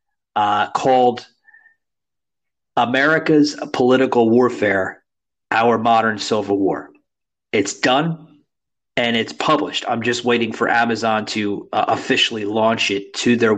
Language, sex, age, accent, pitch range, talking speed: English, male, 30-49, American, 115-150 Hz, 115 wpm